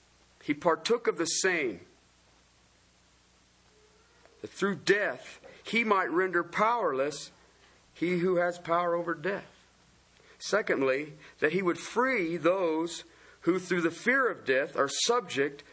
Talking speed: 120 wpm